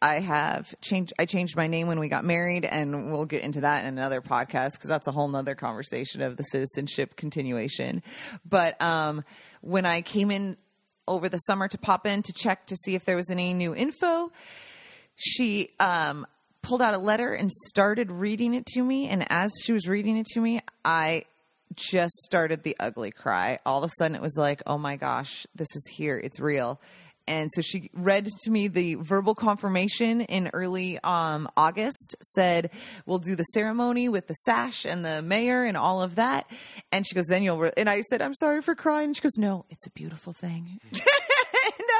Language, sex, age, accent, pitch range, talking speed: English, female, 30-49, American, 170-230 Hz, 200 wpm